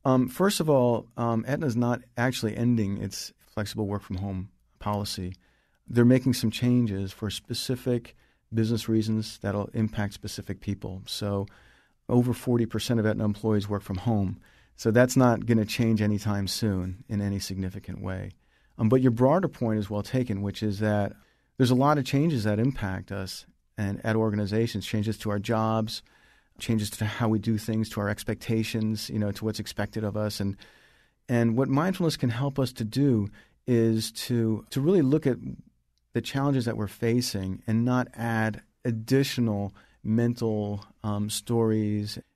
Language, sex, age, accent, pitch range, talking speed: English, male, 40-59, American, 105-120 Hz, 165 wpm